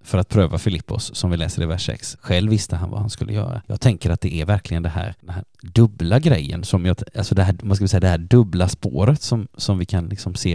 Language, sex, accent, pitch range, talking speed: Swedish, male, native, 90-110 Hz, 255 wpm